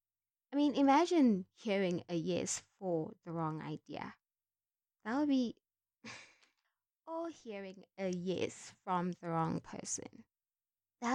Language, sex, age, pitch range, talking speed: English, female, 20-39, 170-220 Hz, 120 wpm